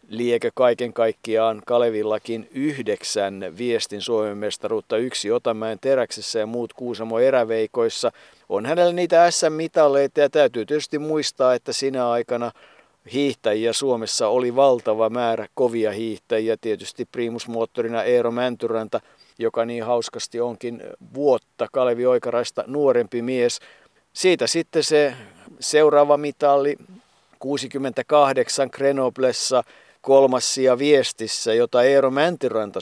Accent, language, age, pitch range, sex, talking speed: native, Finnish, 50-69, 110-135 Hz, male, 100 wpm